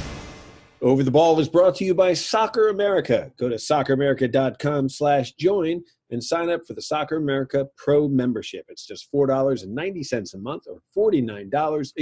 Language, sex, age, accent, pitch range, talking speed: English, male, 40-59, American, 120-160 Hz, 155 wpm